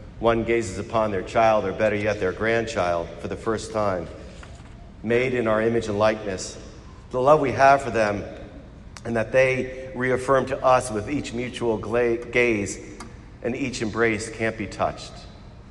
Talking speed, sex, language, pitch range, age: 160 wpm, male, English, 105-125 Hz, 50-69